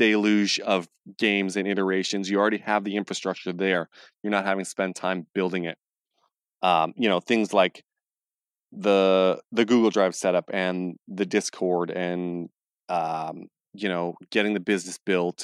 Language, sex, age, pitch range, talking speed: English, male, 20-39, 95-115 Hz, 155 wpm